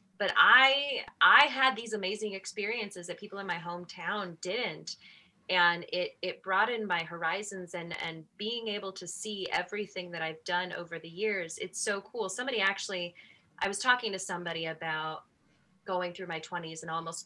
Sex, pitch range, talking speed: female, 175-245 Hz, 170 wpm